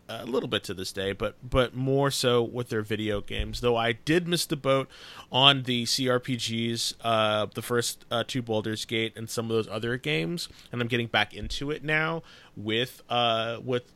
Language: English